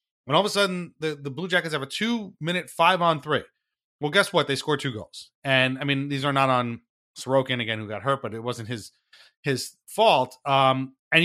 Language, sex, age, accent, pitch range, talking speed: English, male, 30-49, American, 120-140 Hz, 215 wpm